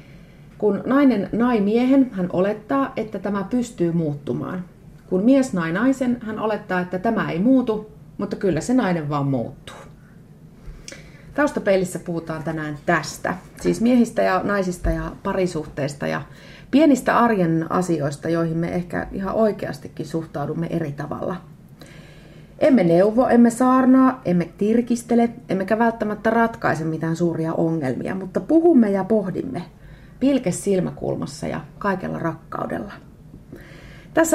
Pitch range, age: 165-230 Hz, 30-49